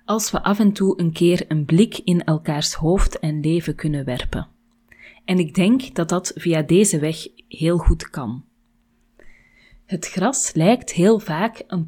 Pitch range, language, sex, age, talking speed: 160-220 Hz, Dutch, female, 30-49, 165 wpm